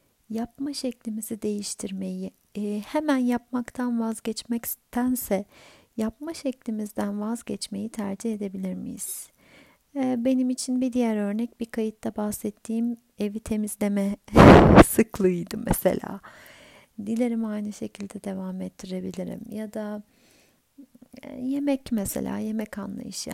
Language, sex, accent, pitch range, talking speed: Turkish, female, native, 210-245 Hz, 90 wpm